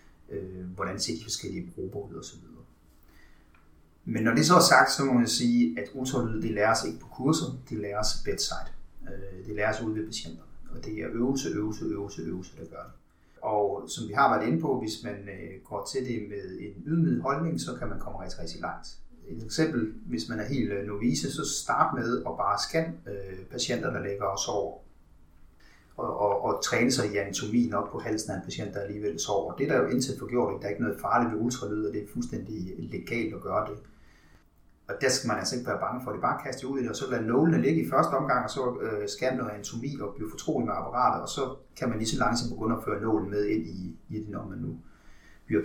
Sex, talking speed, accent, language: male, 235 wpm, native, Danish